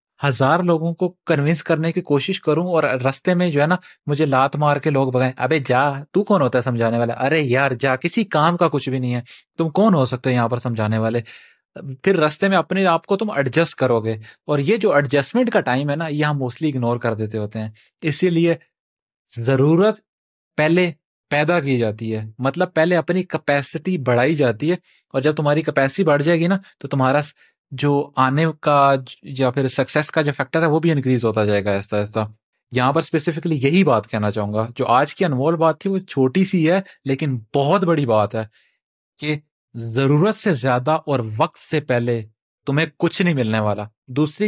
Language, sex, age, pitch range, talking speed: Urdu, male, 30-49, 130-165 Hz, 205 wpm